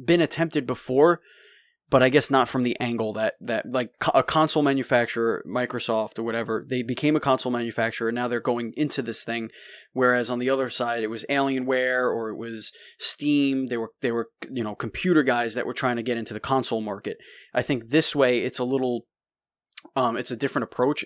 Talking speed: 205 wpm